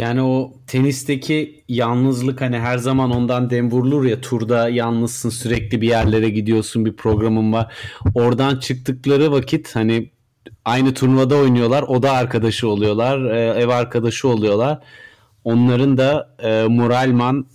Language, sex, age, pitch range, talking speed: Turkish, male, 30-49, 120-175 Hz, 125 wpm